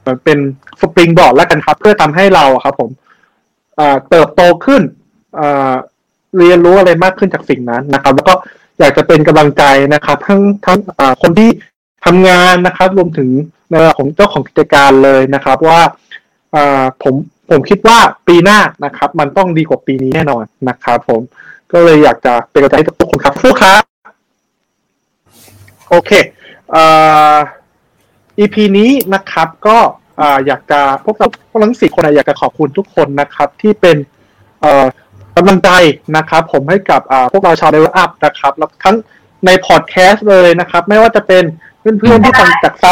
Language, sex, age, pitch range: Thai, male, 20-39, 145-200 Hz